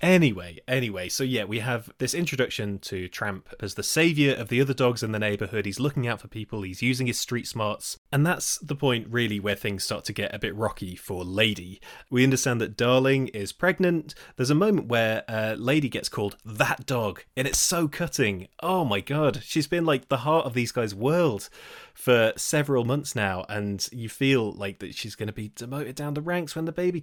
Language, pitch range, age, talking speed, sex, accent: English, 105-140 Hz, 30-49, 215 wpm, male, British